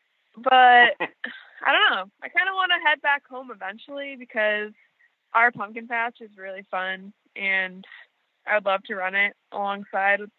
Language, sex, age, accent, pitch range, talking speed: English, female, 20-39, American, 210-275 Hz, 155 wpm